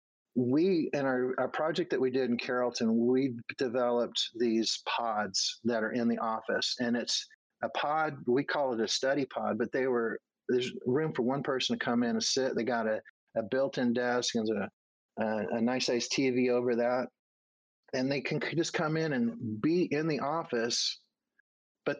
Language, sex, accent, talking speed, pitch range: English, male, American, 185 wpm, 120-140 Hz